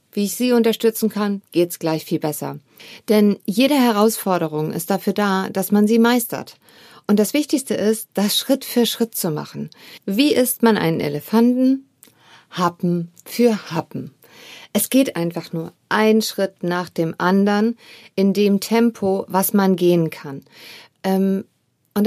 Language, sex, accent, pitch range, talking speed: German, female, German, 185-230 Hz, 150 wpm